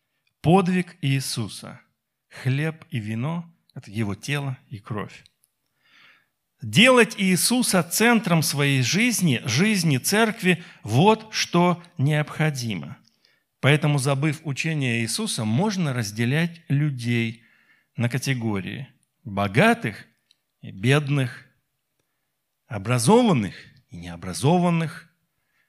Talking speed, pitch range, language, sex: 80 wpm, 130-195 Hz, Russian, male